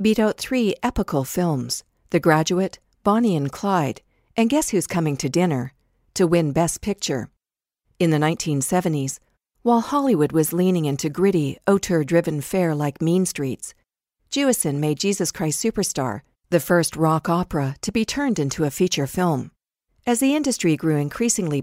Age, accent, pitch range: 50-69, American, 145-195 Hz